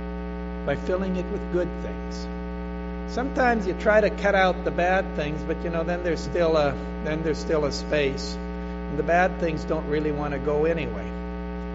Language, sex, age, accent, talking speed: English, male, 60-79, American, 185 wpm